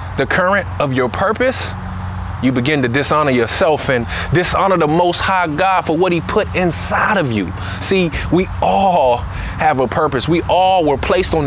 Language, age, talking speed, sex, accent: English, 20-39, 180 wpm, male, American